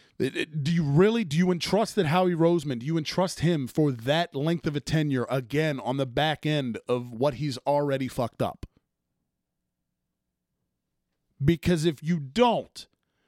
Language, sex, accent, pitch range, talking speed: English, male, American, 115-155 Hz, 155 wpm